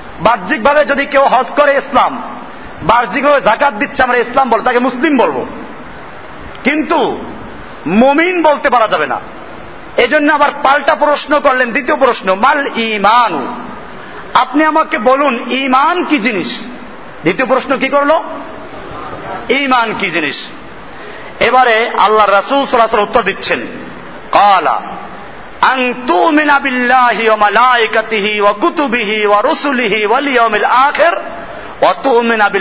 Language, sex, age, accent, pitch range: Bengali, male, 50-69, native, 230-290 Hz